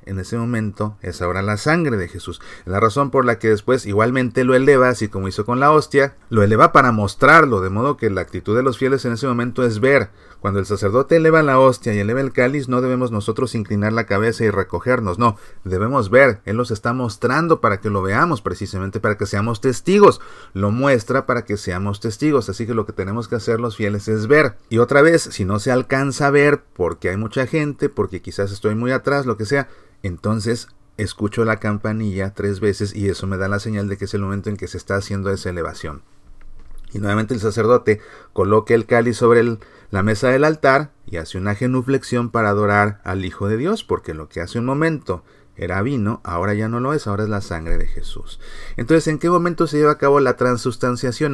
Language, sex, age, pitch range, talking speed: Spanish, male, 30-49, 100-125 Hz, 220 wpm